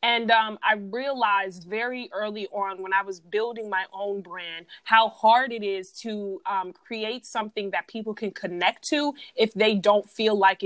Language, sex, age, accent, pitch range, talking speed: English, female, 20-39, American, 190-230 Hz, 180 wpm